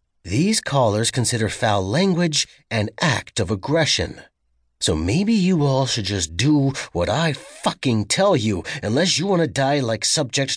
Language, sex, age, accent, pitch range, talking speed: English, male, 30-49, American, 95-110 Hz, 160 wpm